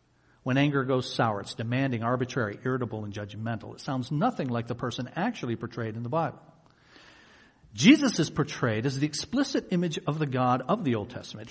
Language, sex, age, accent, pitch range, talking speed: English, male, 50-69, American, 125-170 Hz, 180 wpm